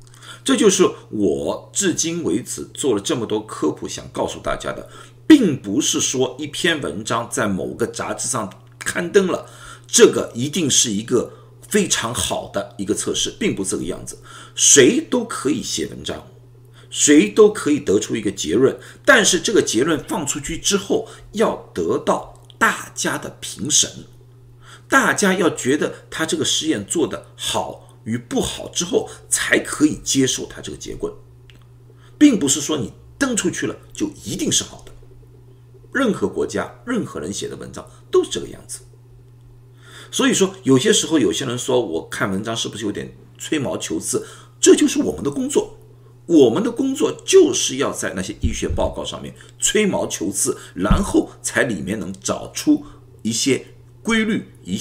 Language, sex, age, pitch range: Chinese, male, 50-69, 120-190 Hz